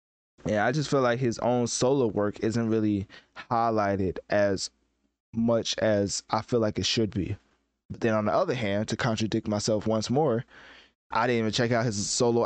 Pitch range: 105-125 Hz